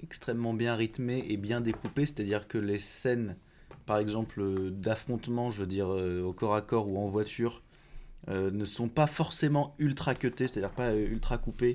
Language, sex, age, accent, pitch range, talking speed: French, male, 20-39, French, 90-125 Hz, 165 wpm